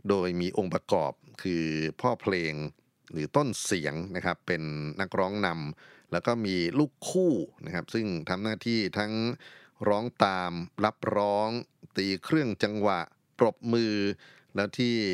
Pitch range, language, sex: 85-110 Hz, Thai, male